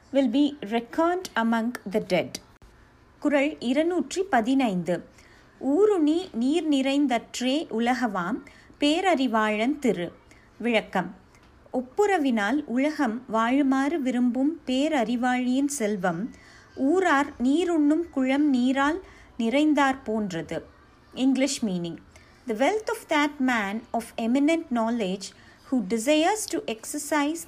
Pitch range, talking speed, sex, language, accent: 225-295 Hz, 95 wpm, female, Tamil, native